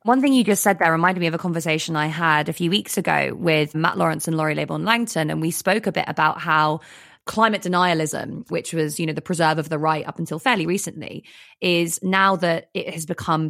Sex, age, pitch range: female, 20-39, 155-175 Hz